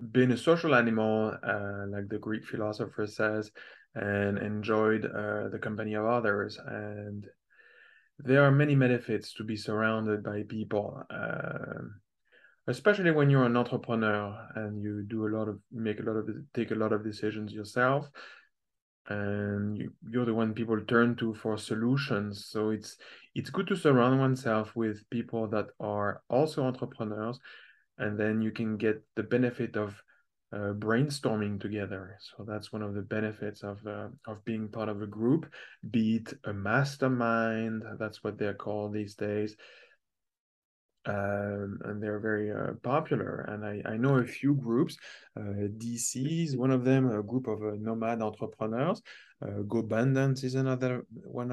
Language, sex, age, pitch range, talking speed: English, male, 20-39, 105-120 Hz, 160 wpm